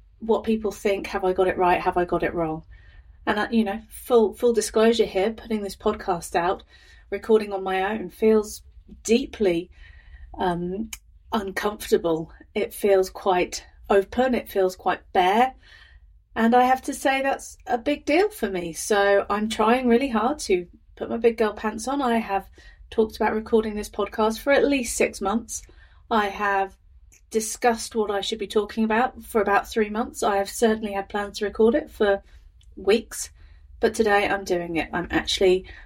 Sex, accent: female, British